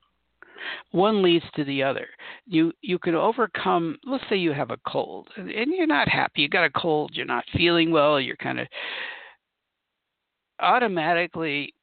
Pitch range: 140-180 Hz